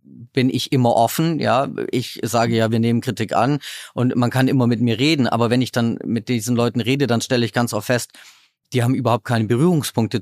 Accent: German